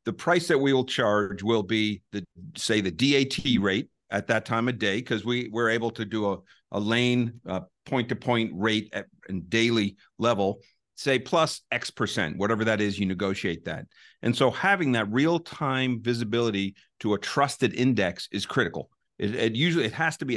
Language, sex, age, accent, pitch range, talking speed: English, male, 50-69, American, 105-130 Hz, 185 wpm